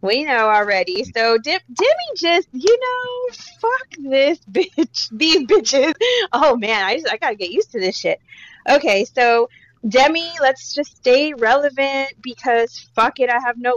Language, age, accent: English, 30-49, American